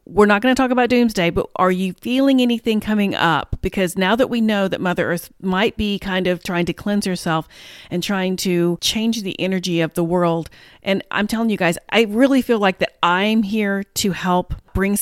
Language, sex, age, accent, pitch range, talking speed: English, female, 40-59, American, 175-220 Hz, 215 wpm